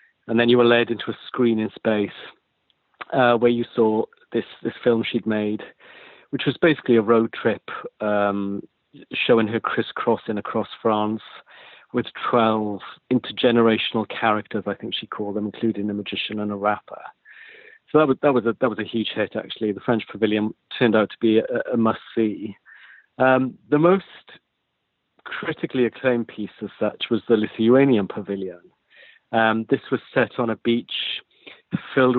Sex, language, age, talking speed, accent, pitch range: male, English, 40-59, 165 wpm, British, 105-125 Hz